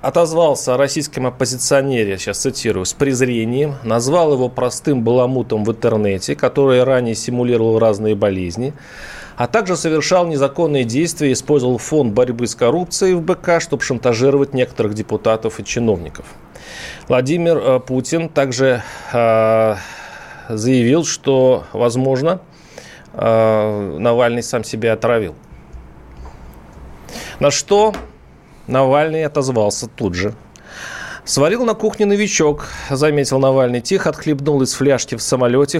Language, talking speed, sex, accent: Russian, 115 wpm, male, native